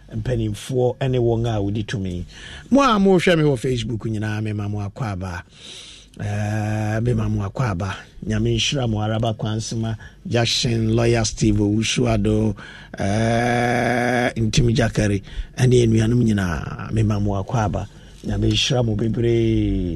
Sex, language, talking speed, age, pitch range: male, English, 135 wpm, 50-69, 100-130 Hz